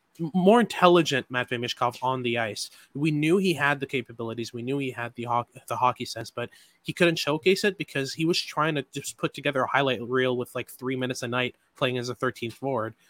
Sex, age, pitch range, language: male, 20-39, 125-155 Hz, English